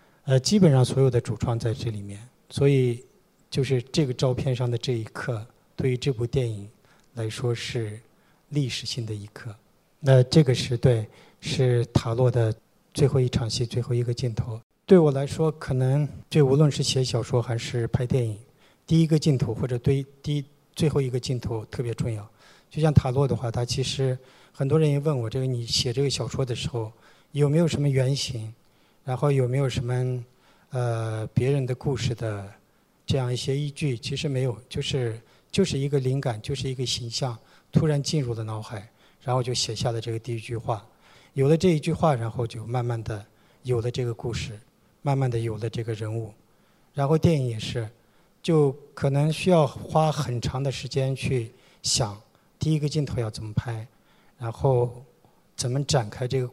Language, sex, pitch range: Chinese, male, 115-140 Hz